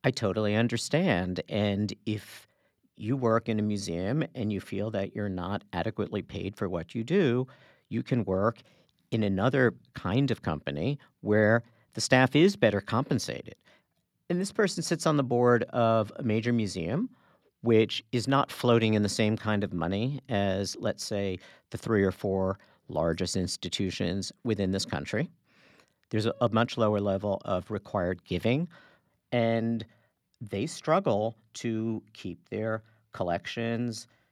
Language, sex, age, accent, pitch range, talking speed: English, male, 50-69, American, 100-120 Hz, 145 wpm